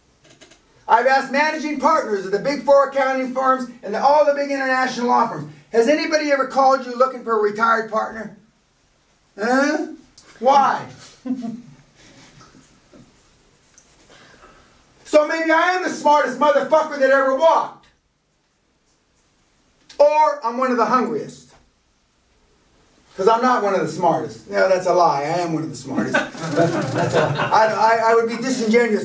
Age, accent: 40-59, American